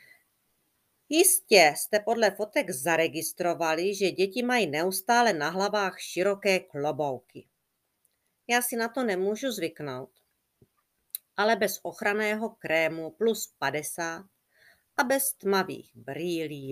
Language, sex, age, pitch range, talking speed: Czech, female, 40-59, 150-210 Hz, 105 wpm